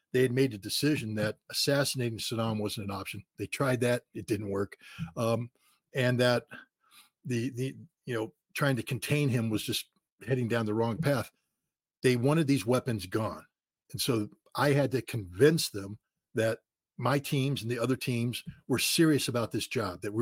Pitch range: 115-145 Hz